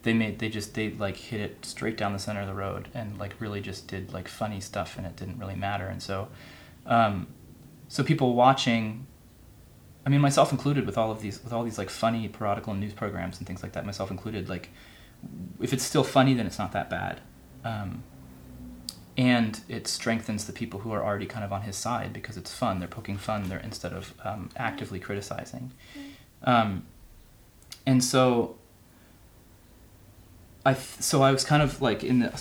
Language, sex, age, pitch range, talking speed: English, male, 20-39, 95-120 Hz, 195 wpm